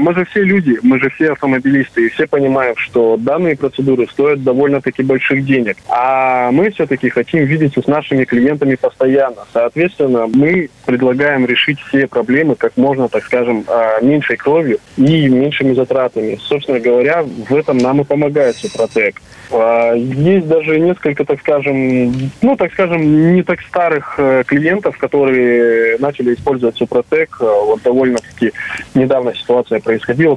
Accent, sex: native, male